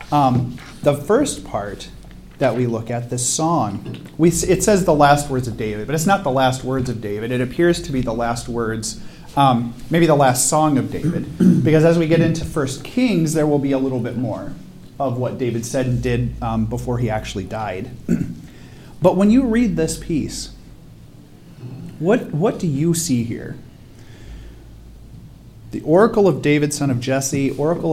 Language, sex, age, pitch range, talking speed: English, male, 40-59, 125-155 Hz, 185 wpm